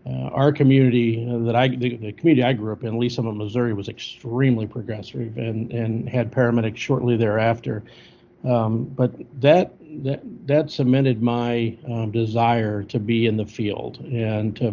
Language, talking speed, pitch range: English, 165 wpm, 110-125 Hz